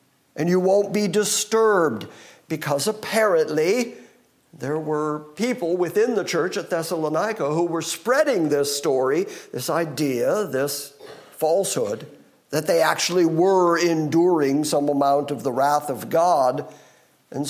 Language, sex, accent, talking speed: English, male, American, 125 wpm